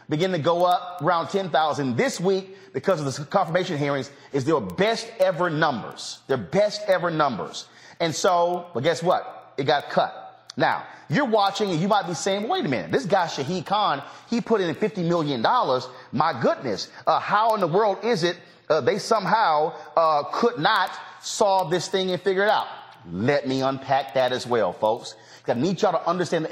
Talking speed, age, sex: 190 wpm, 30-49, male